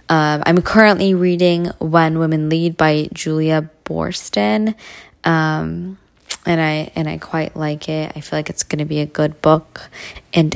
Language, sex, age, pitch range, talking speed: English, female, 20-39, 155-195 Hz, 160 wpm